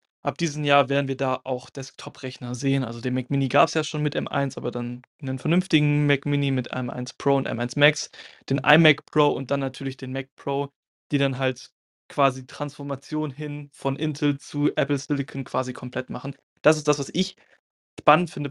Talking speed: 200 wpm